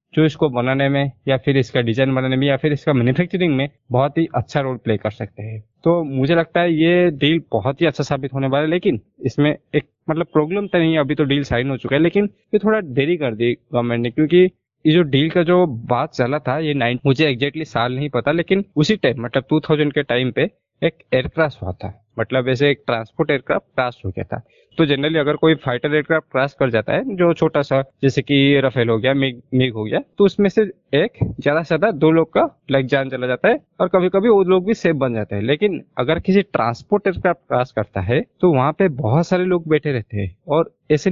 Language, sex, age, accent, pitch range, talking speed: Hindi, male, 20-39, native, 125-165 Hz, 235 wpm